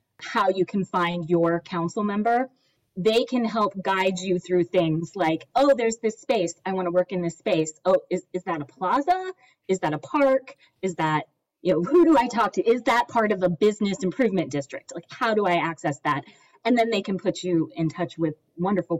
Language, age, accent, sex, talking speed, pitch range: English, 20-39, American, female, 215 wpm, 170-220 Hz